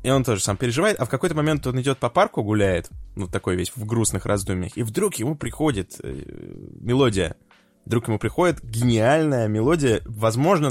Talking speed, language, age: 175 wpm, Russian, 20-39